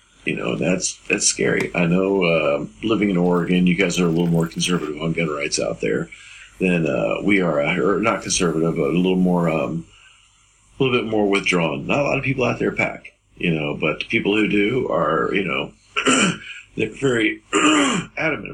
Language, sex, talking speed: English, male, 195 wpm